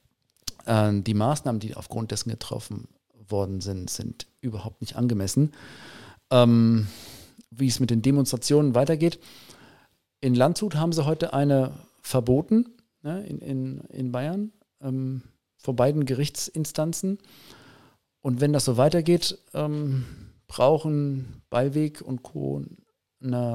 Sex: male